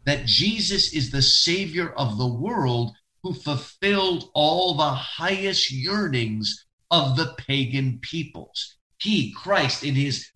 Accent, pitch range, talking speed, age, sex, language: American, 130-170 Hz, 125 wpm, 50-69, male, English